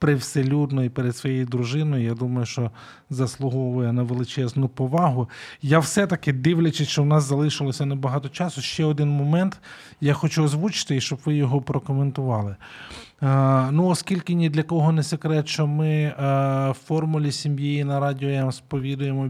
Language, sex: Ukrainian, male